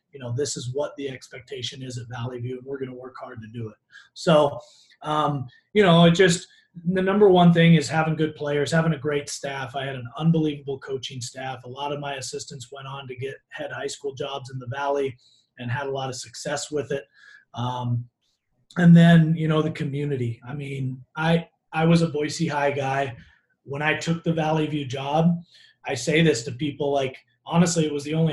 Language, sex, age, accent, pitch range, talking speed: English, male, 30-49, American, 135-160 Hz, 215 wpm